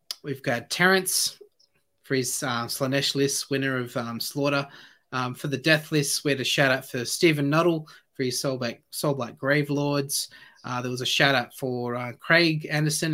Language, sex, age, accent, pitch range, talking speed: English, male, 20-39, Australian, 130-150 Hz, 185 wpm